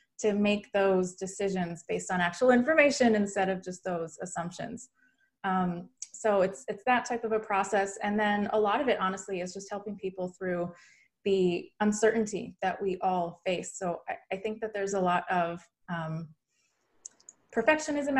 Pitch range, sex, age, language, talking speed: 180-215 Hz, female, 20-39, English, 170 wpm